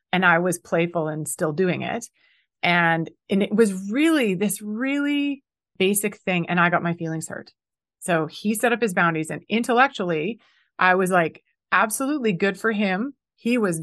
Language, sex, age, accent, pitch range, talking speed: English, female, 30-49, American, 170-220 Hz, 175 wpm